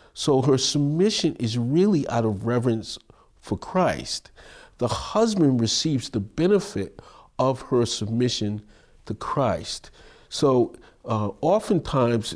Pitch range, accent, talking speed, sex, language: 105-140 Hz, American, 110 wpm, male, English